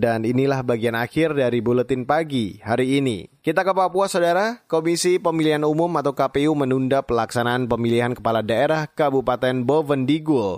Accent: native